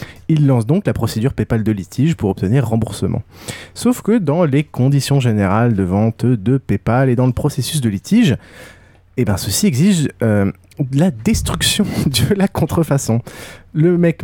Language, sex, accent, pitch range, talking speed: French, male, French, 105-140 Hz, 160 wpm